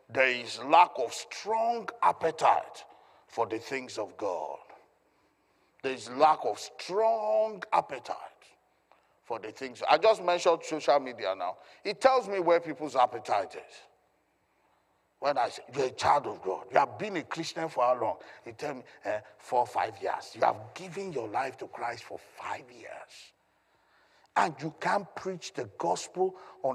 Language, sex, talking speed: English, male, 165 wpm